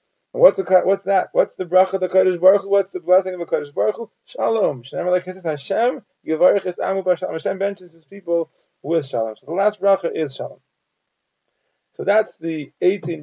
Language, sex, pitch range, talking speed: English, male, 150-190 Hz, 170 wpm